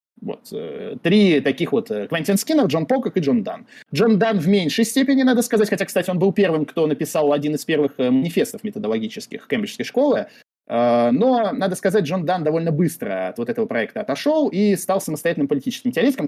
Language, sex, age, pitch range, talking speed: Russian, male, 20-39, 150-230 Hz, 180 wpm